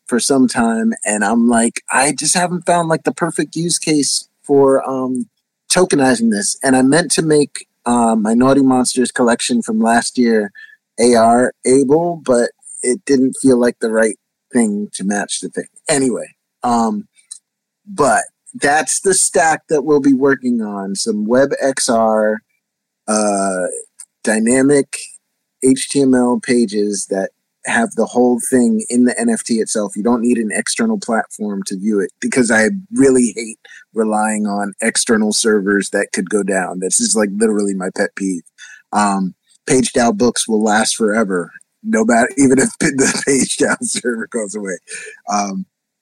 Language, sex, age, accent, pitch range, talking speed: English, male, 30-49, American, 110-145 Hz, 155 wpm